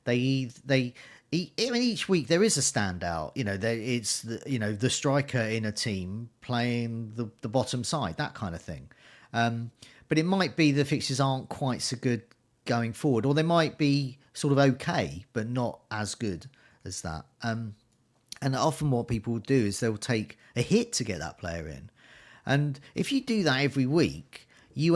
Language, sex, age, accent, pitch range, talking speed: English, male, 40-59, British, 110-145 Hz, 195 wpm